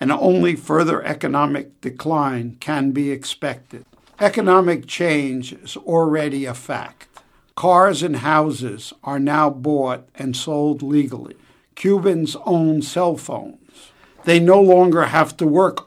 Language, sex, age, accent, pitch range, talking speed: English, male, 60-79, American, 145-180 Hz, 125 wpm